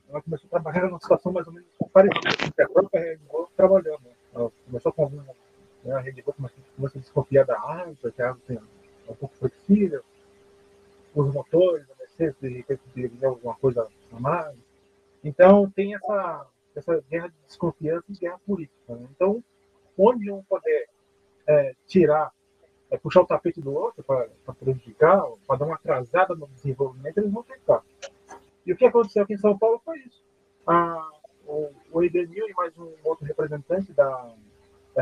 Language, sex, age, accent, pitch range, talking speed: Portuguese, male, 30-49, Brazilian, 125-180 Hz, 175 wpm